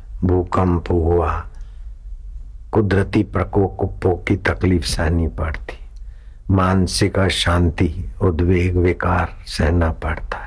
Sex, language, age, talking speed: male, Hindi, 60-79, 75 wpm